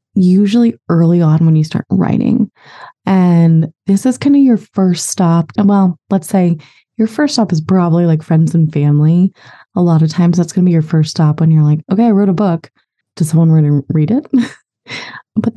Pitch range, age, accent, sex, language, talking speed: 155-195 Hz, 20-39, American, female, English, 205 wpm